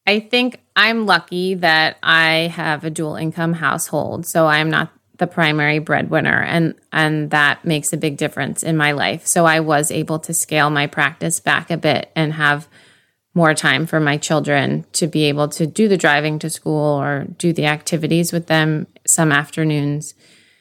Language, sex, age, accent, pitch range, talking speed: English, female, 30-49, American, 150-170 Hz, 185 wpm